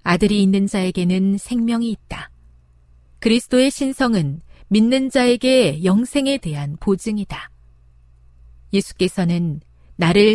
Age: 40-59